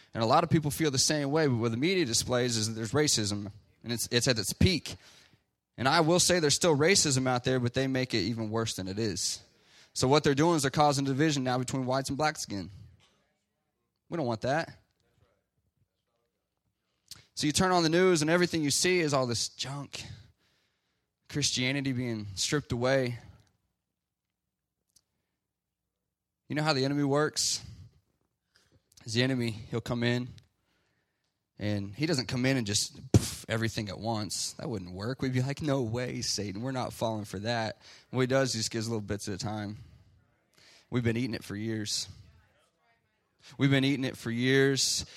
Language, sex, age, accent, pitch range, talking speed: English, male, 20-39, American, 110-140 Hz, 185 wpm